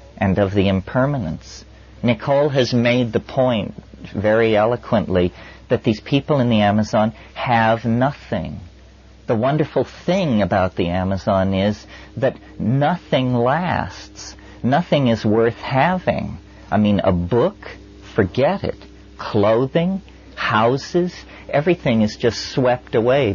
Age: 50-69